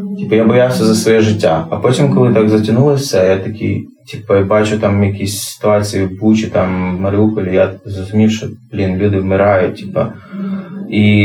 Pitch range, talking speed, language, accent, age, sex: 100-115 Hz, 165 wpm, Ukrainian, native, 20-39, male